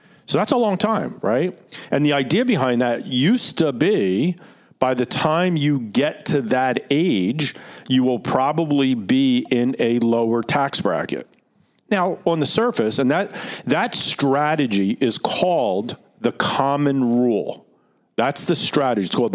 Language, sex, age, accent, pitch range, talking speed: English, male, 50-69, American, 125-170 Hz, 150 wpm